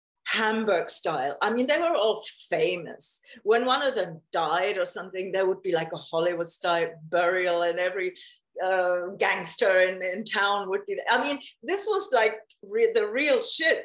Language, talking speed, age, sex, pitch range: English, 175 wpm, 40-59, female, 190-305 Hz